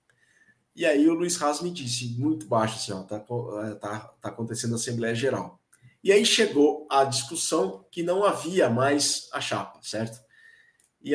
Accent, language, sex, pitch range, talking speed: Brazilian, Portuguese, male, 130-180 Hz, 150 wpm